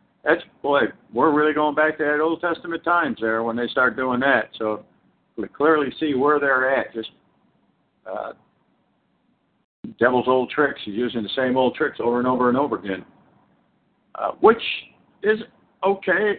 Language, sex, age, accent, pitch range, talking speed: English, male, 50-69, American, 130-180 Hz, 165 wpm